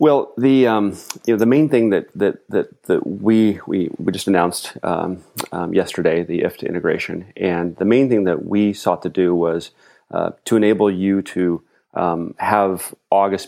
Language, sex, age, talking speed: English, male, 30-49, 185 wpm